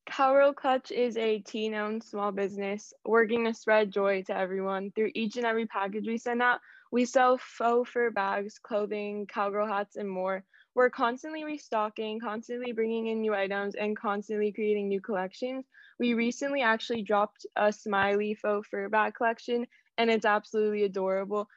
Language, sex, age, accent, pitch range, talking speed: English, female, 10-29, American, 205-235 Hz, 165 wpm